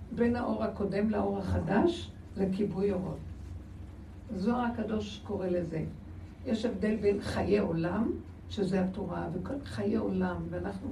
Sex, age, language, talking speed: female, 60-79, Hebrew, 115 wpm